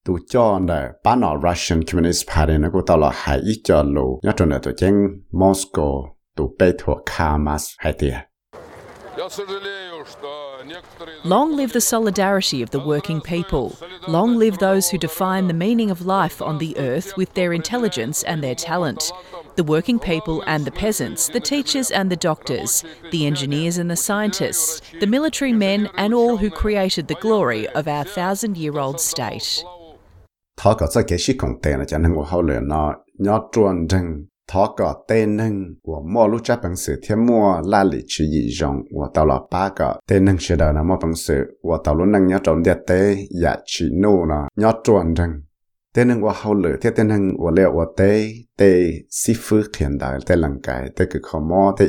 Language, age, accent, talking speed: English, 40-59, Australian, 65 wpm